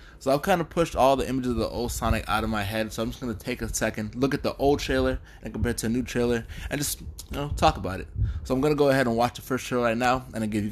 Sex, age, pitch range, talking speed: male, 20-39, 90-120 Hz, 335 wpm